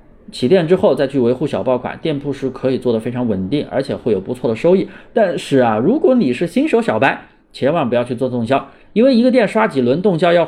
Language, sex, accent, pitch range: Chinese, male, native, 135-205 Hz